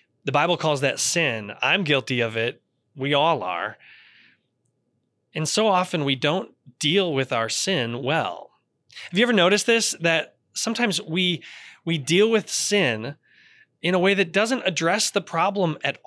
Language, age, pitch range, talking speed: English, 20-39, 135-185 Hz, 160 wpm